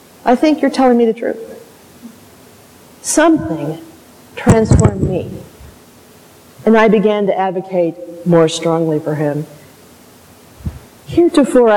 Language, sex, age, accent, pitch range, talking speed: English, female, 50-69, American, 160-210 Hz, 100 wpm